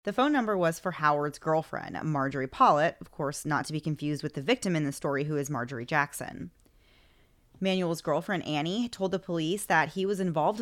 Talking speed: 200 wpm